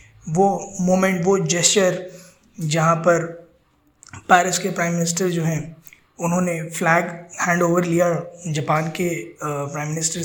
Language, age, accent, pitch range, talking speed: Hindi, 20-39, native, 170-215 Hz, 125 wpm